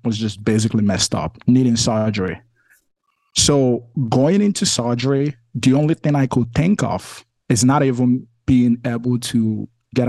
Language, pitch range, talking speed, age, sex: English, 115-130 Hz, 150 wpm, 20-39, male